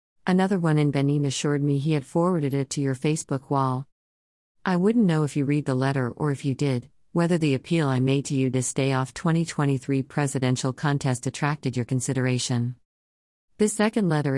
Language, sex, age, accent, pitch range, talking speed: English, female, 50-69, American, 130-155 Hz, 190 wpm